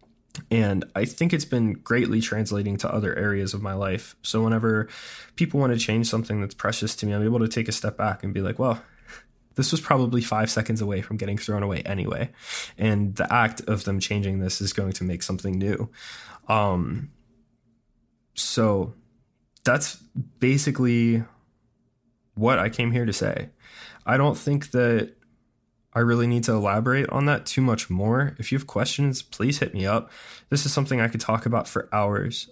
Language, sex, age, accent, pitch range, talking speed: English, male, 20-39, American, 100-120 Hz, 185 wpm